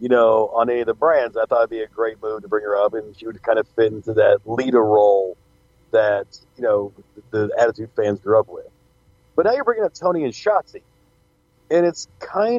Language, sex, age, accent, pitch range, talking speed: English, male, 40-59, American, 120-170 Hz, 230 wpm